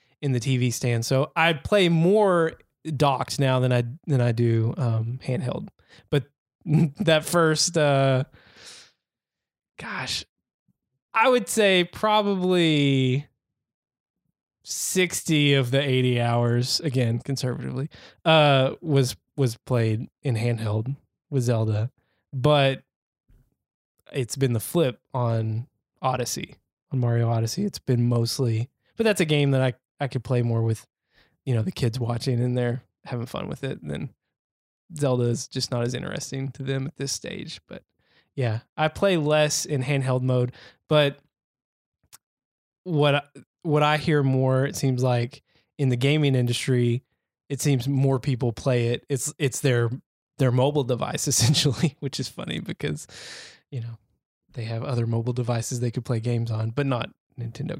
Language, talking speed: English, 145 wpm